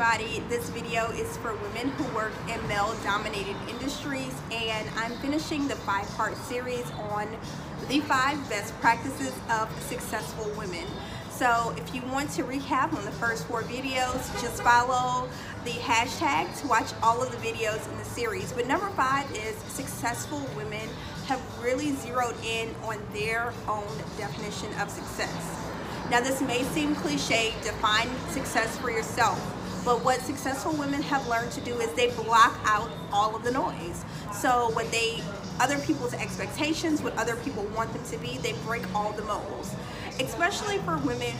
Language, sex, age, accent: English, female, 30-49, American